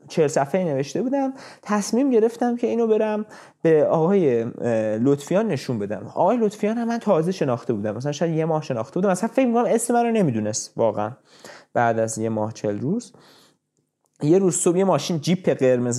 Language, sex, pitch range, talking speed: Persian, male, 140-215 Hz, 175 wpm